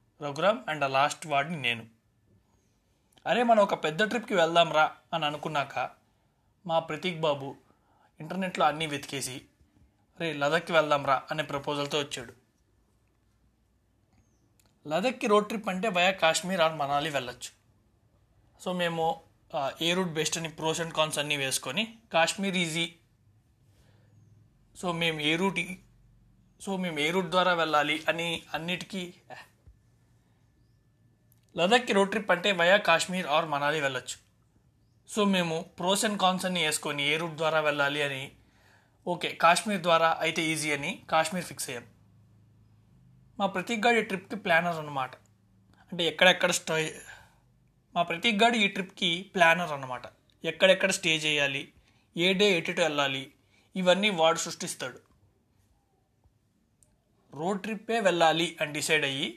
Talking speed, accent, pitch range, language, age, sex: 120 wpm, native, 125-180 Hz, Telugu, 30-49, male